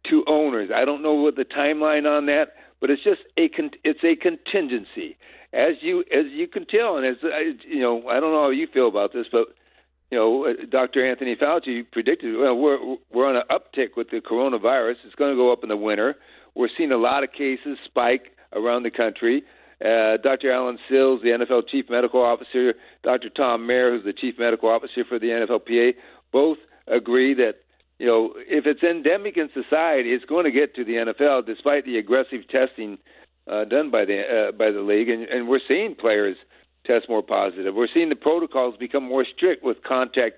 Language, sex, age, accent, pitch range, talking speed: English, male, 60-79, American, 120-160 Hz, 200 wpm